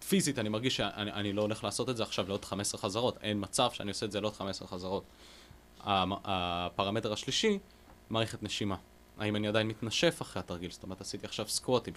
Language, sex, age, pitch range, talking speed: Hebrew, male, 20-39, 95-125 Hz, 205 wpm